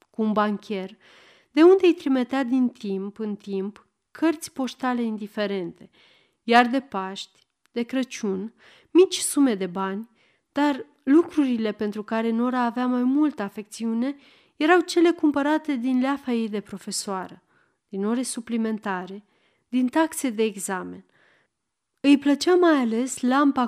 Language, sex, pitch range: Romanian, female, 205-275 Hz